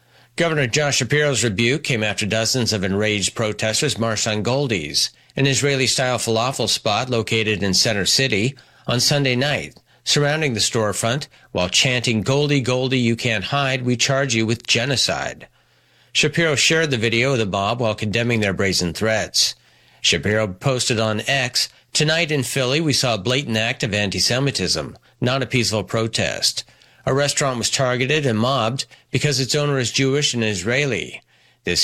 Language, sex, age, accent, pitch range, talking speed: English, male, 40-59, American, 110-140 Hz, 155 wpm